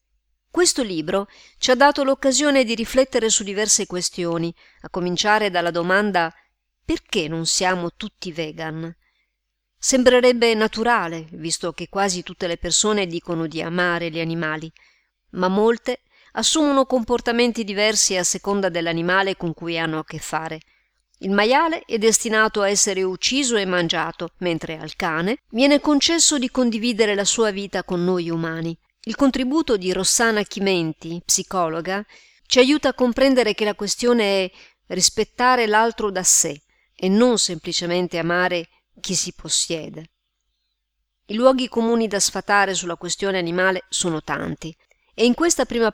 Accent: native